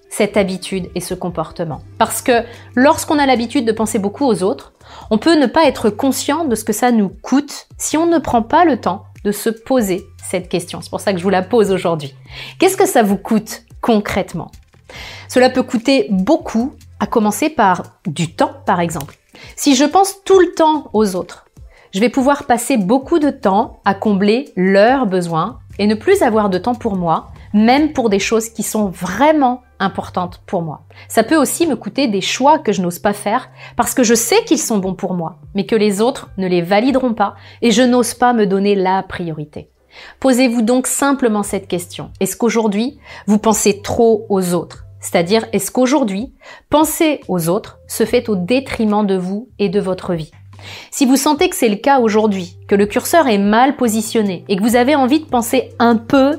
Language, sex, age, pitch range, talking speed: French, female, 30-49, 195-260 Hz, 200 wpm